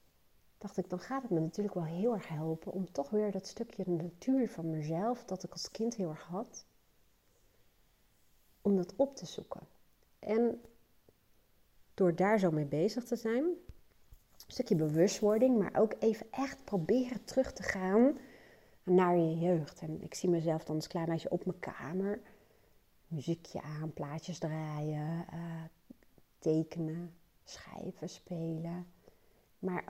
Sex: female